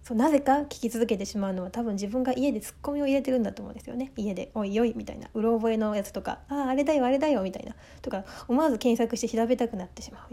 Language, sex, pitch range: Japanese, female, 200-250 Hz